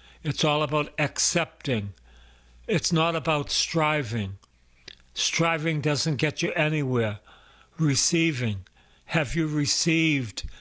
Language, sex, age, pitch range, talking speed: English, male, 60-79, 115-155 Hz, 95 wpm